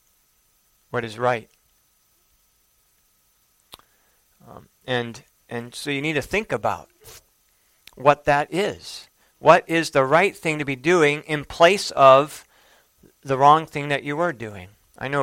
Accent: American